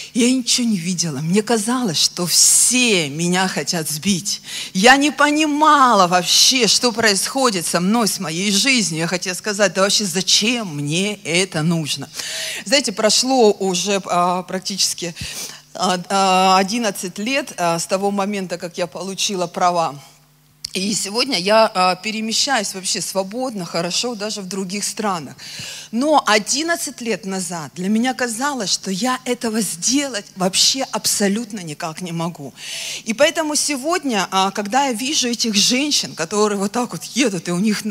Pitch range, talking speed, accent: 180-240 Hz, 140 wpm, native